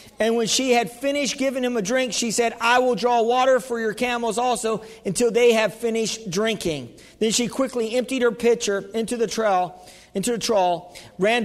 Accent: American